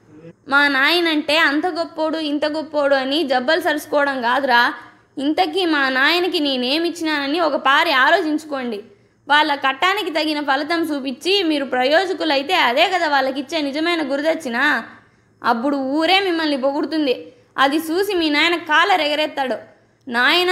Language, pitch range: Telugu, 275-335 Hz